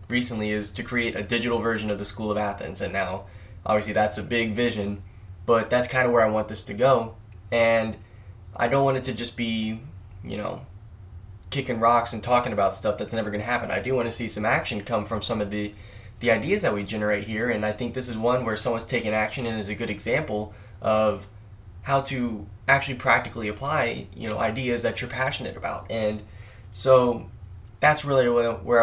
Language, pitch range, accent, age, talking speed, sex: English, 105-120 Hz, American, 10-29, 205 wpm, male